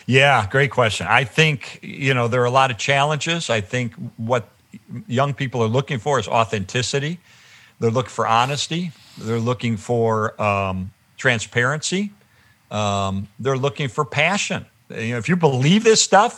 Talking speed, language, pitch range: 160 wpm, English, 110-140 Hz